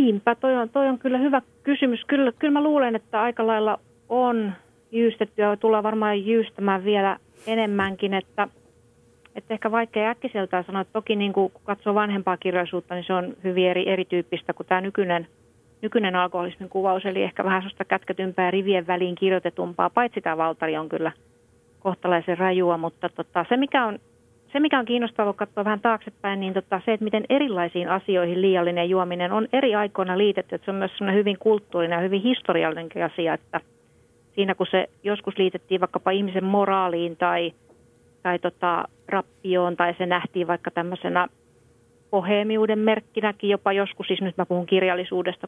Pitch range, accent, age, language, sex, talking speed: 180-215 Hz, native, 40-59, Finnish, female, 165 wpm